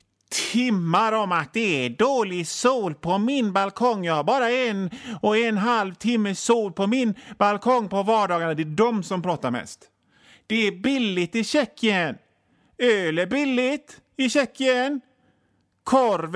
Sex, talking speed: male, 150 wpm